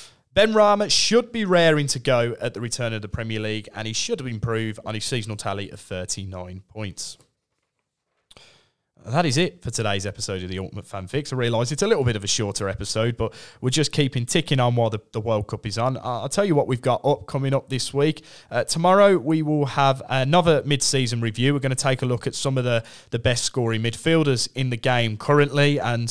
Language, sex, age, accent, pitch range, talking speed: English, male, 20-39, British, 110-145 Hz, 225 wpm